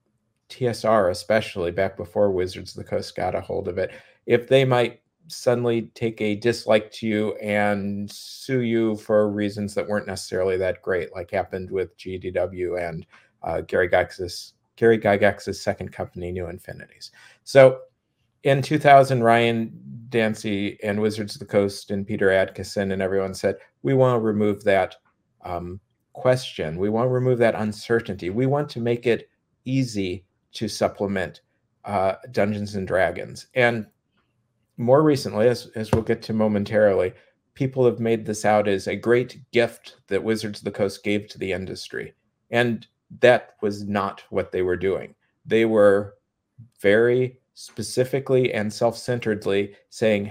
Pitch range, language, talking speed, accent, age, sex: 100-120 Hz, English, 155 wpm, American, 50-69, male